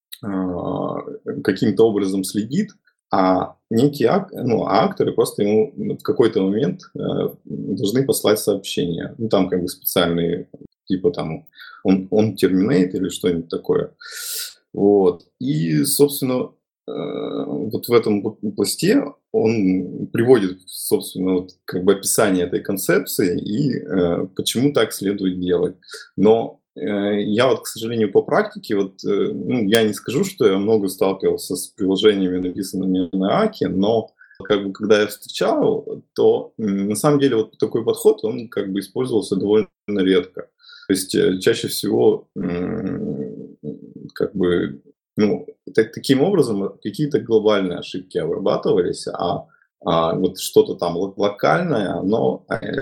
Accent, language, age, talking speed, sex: native, Russian, 20-39, 125 wpm, male